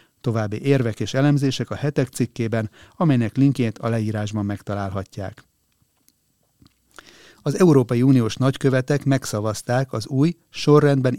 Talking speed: 105 wpm